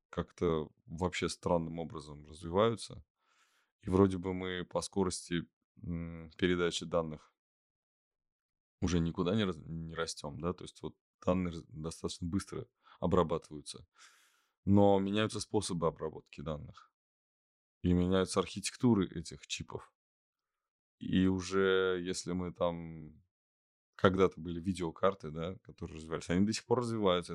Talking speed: 110 wpm